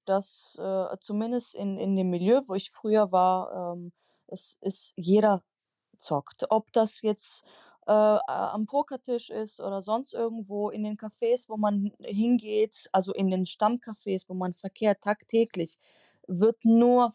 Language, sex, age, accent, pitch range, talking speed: German, female, 20-39, German, 180-220 Hz, 150 wpm